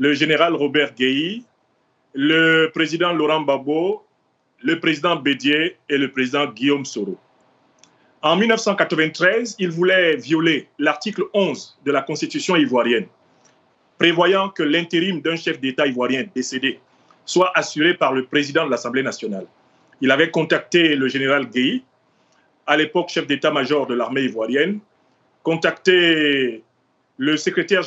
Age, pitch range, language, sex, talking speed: 40-59, 145-200 Hz, French, male, 125 wpm